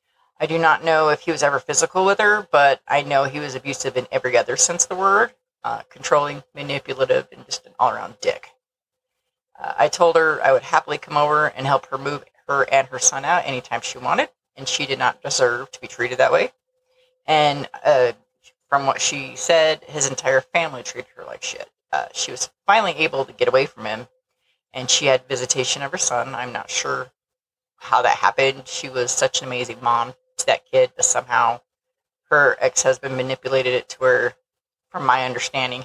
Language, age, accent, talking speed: English, 30-49, American, 200 wpm